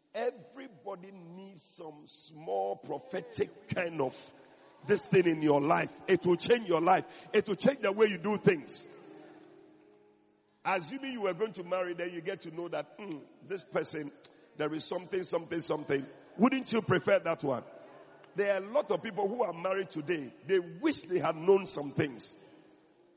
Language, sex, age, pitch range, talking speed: English, male, 50-69, 175-285 Hz, 175 wpm